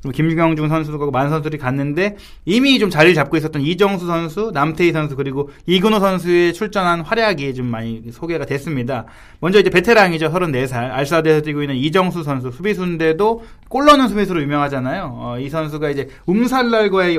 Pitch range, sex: 145-205 Hz, male